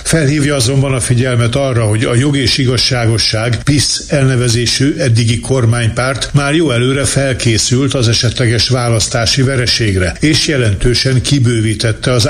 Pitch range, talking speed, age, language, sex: 115-130 Hz, 125 wpm, 60-79, Hungarian, male